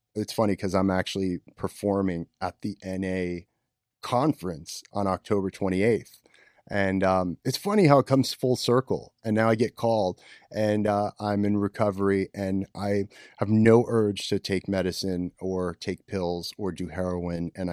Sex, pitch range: male, 95-125 Hz